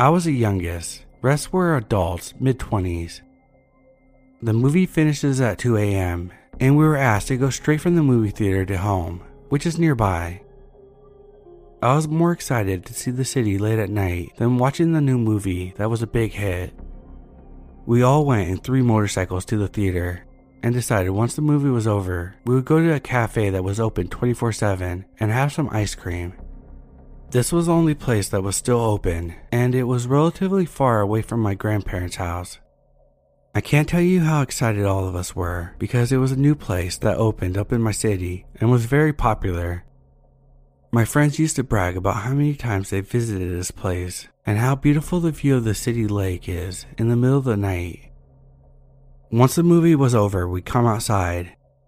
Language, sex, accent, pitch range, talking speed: English, male, American, 90-130 Hz, 190 wpm